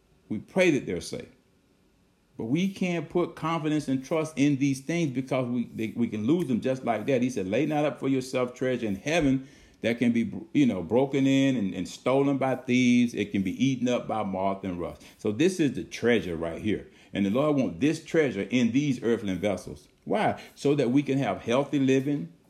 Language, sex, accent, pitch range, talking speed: English, male, American, 110-140 Hz, 215 wpm